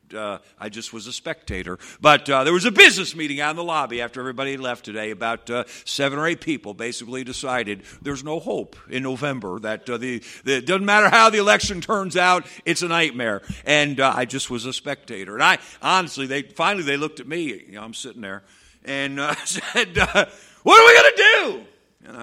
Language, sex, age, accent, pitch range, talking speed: English, male, 50-69, American, 130-185 Hz, 220 wpm